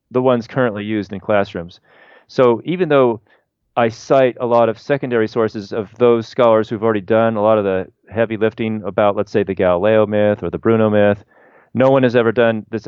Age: 40-59